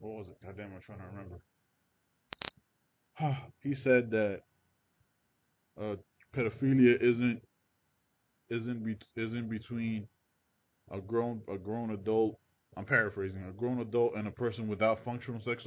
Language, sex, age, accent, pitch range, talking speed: English, male, 20-39, American, 105-125 Hz, 130 wpm